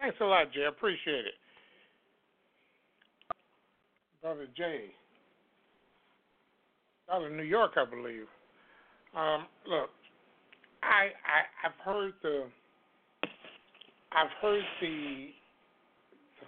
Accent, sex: American, male